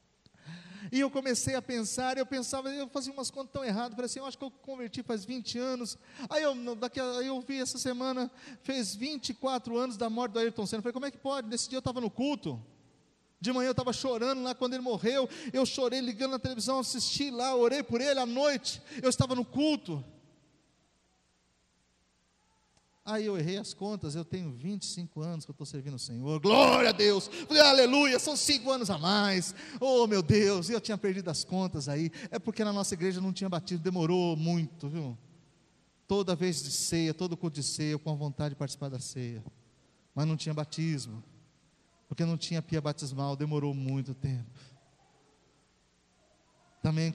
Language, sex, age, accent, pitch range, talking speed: Portuguese, male, 40-59, Brazilian, 155-255 Hz, 190 wpm